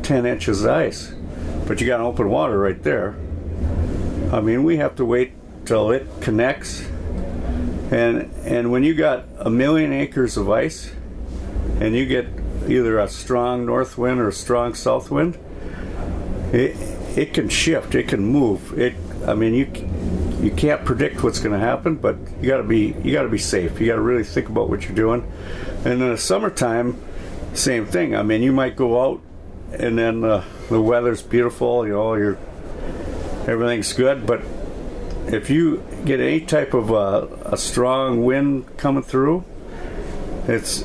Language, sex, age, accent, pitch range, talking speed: English, male, 50-69, American, 90-125 Hz, 170 wpm